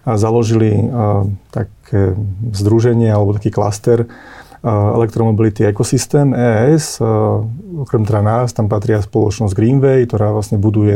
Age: 30-49